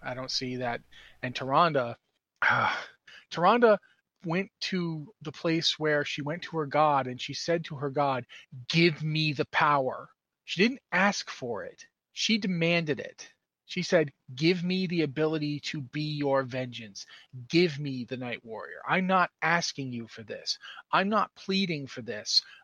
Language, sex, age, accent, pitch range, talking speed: English, male, 30-49, American, 130-170 Hz, 160 wpm